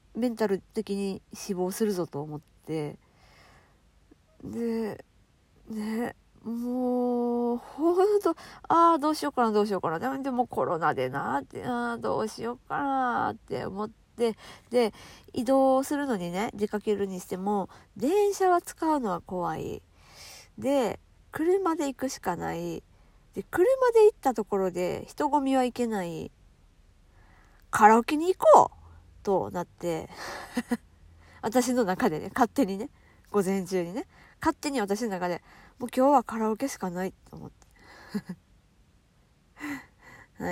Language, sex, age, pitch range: Japanese, female, 40-59, 185-265 Hz